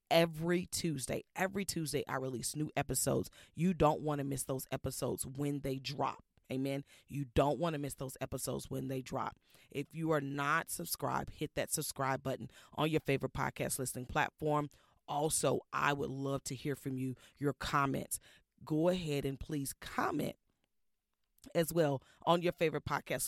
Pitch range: 135-165 Hz